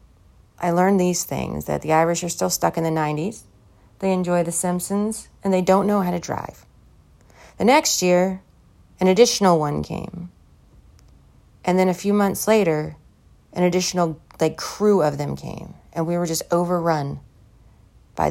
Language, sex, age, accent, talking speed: English, female, 30-49, American, 165 wpm